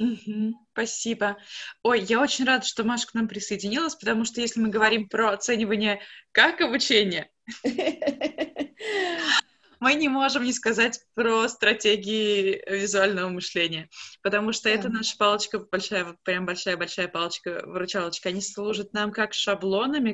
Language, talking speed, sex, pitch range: Russian, 135 wpm, female, 190-235 Hz